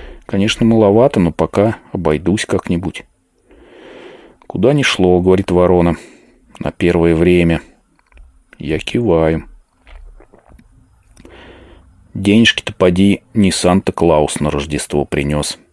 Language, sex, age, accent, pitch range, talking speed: Russian, male, 30-49, native, 75-90 Hz, 90 wpm